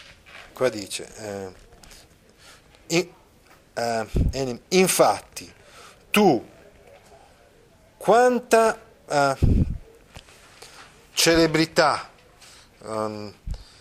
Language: Italian